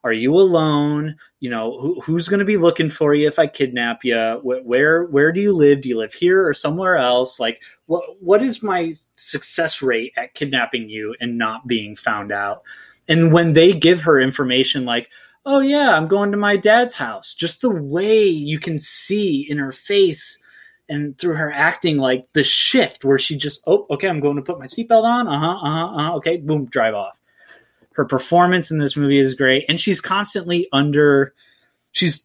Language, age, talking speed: English, 20-39, 195 wpm